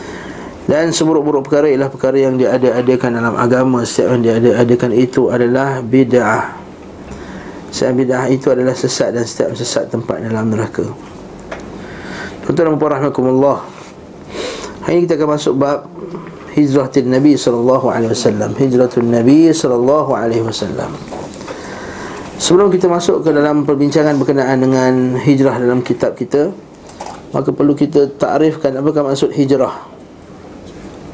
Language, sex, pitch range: Malay, male, 125-150 Hz